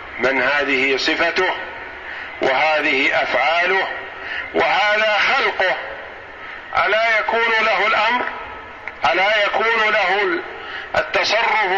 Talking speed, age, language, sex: 75 wpm, 50-69, Arabic, male